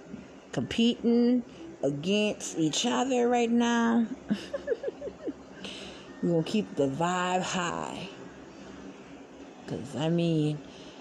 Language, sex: English, female